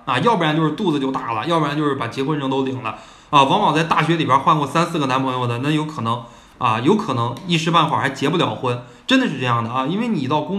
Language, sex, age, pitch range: Chinese, male, 20-39, 125-175 Hz